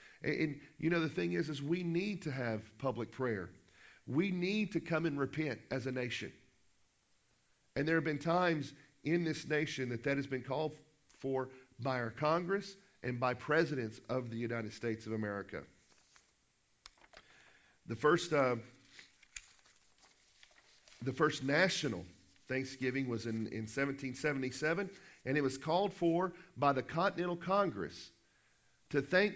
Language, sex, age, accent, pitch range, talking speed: English, male, 50-69, American, 125-175 Hz, 145 wpm